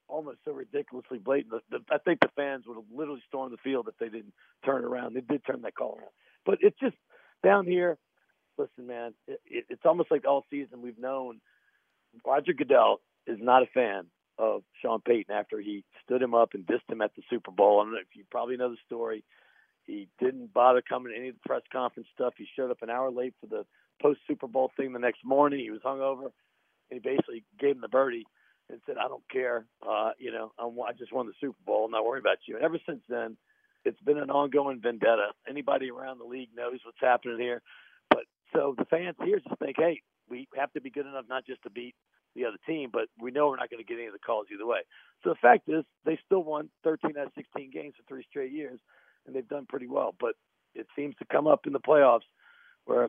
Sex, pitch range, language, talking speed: male, 120-155 Hz, English, 235 wpm